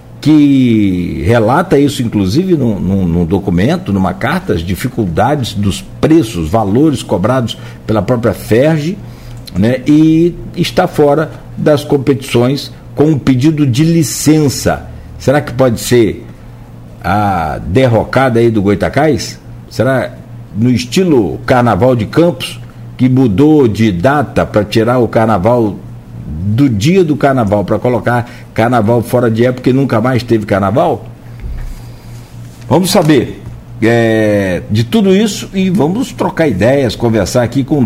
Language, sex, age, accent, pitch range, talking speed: Portuguese, male, 60-79, Brazilian, 110-145 Hz, 125 wpm